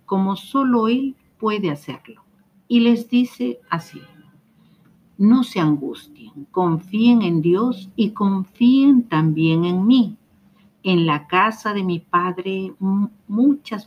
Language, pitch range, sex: Spanish, 155-220 Hz, female